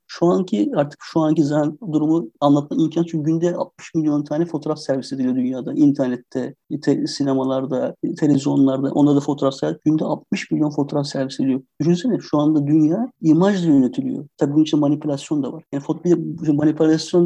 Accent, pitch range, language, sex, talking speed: native, 145-175 Hz, Turkish, male, 165 wpm